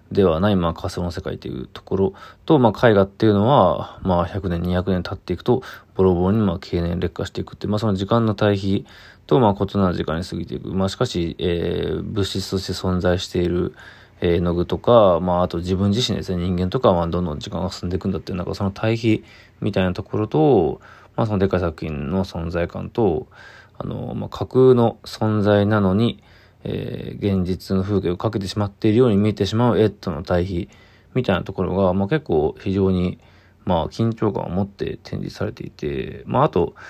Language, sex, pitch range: Japanese, male, 90-110 Hz